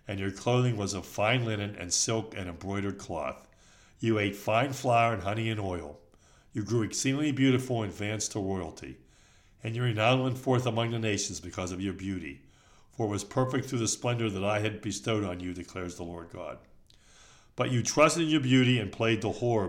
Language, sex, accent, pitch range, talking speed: English, male, American, 95-125 Hz, 205 wpm